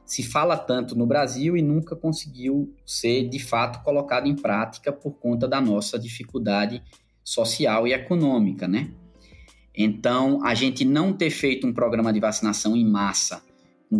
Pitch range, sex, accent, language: 110-145 Hz, male, Brazilian, Portuguese